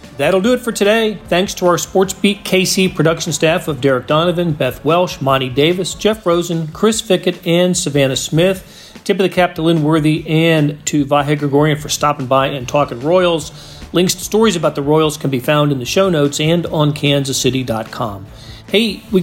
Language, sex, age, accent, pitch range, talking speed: English, male, 40-59, American, 140-180 Hz, 195 wpm